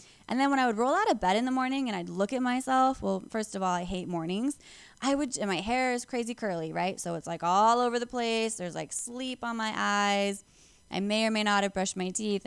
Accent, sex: American, female